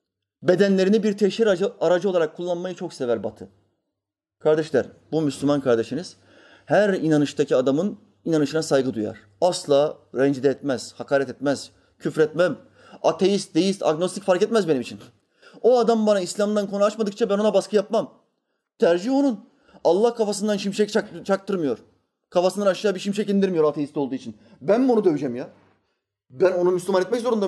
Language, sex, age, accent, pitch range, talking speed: Turkish, male, 30-49, native, 130-200 Hz, 145 wpm